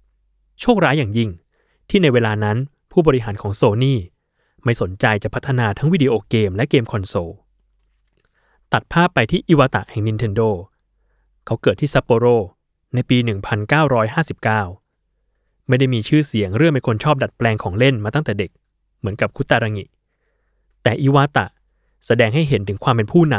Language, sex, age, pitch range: Thai, male, 20-39, 100-135 Hz